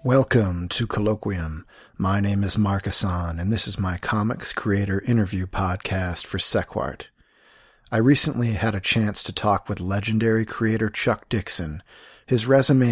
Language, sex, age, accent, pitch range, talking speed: English, male, 40-59, American, 95-115 Hz, 150 wpm